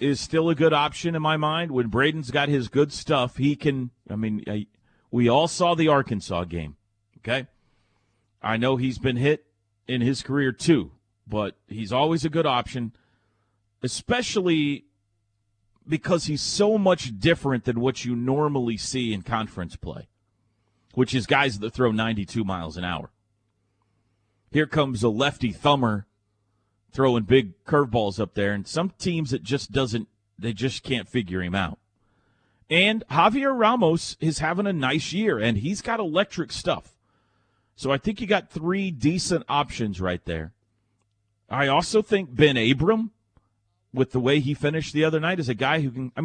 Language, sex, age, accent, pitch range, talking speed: English, male, 40-59, American, 105-155 Hz, 165 wpm